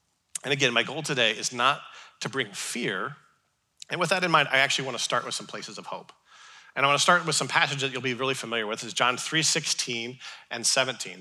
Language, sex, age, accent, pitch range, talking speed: English, male, 40-59, American, 120-155 Hz, 235 wpm